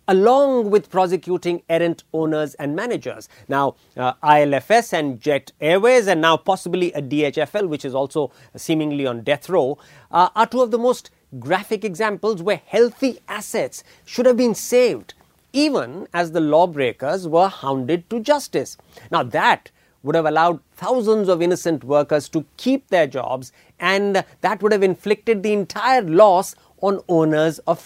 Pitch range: 155-225 Hz